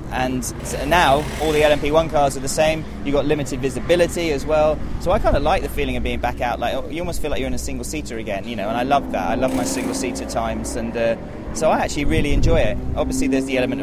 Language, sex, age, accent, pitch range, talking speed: English, male, 20-39, British, 115-140 Hz, 255 wpm